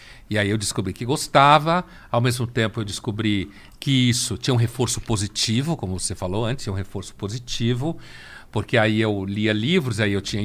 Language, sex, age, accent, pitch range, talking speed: Portuguese, male, 60-79, Brazilian, 100-125 Hz, 190 wpm